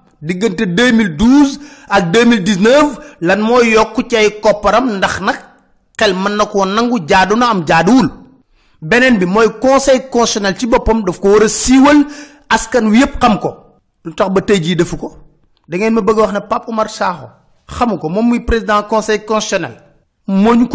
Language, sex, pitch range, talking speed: French, male, 190-250 Hz, 85 wpm